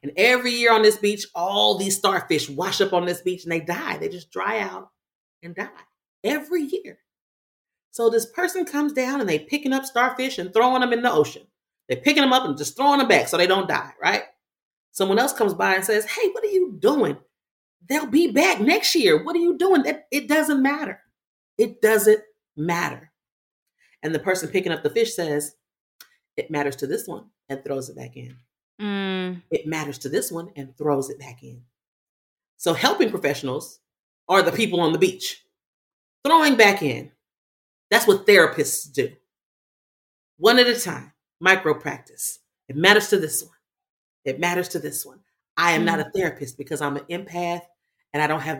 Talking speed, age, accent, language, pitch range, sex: 190 wpm, 40-59, American, English, 160-265 Hz, female